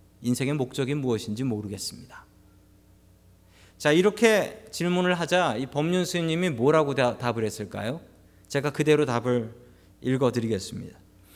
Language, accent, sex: Korean, native, male